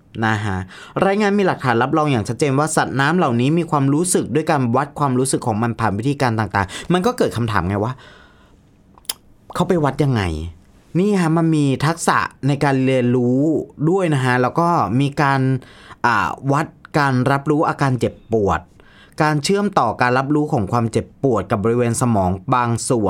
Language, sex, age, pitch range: Thai, male, 20-39, 110-145 Hz